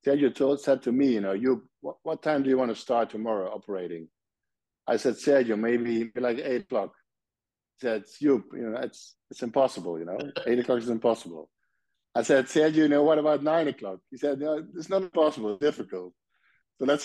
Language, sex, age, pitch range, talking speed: English, male, 50-69, 105-130 Hz, 195 wpm